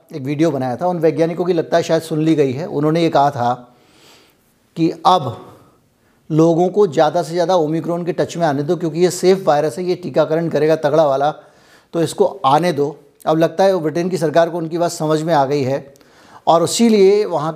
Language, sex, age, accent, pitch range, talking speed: Hindi, male, 60-79, native, 150-175 Hz, 220 wpm